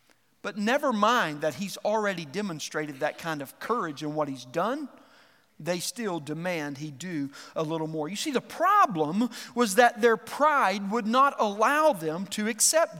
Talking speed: 170 wpm